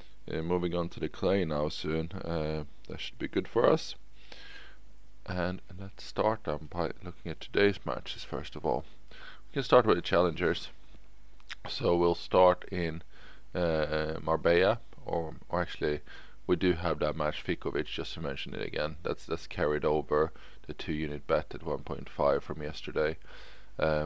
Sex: male